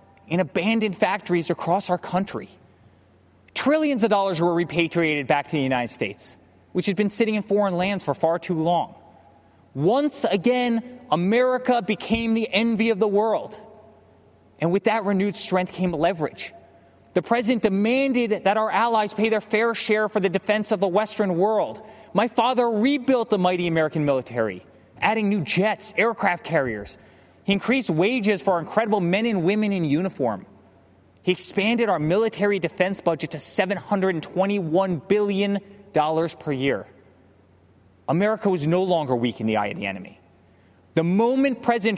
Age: 30-49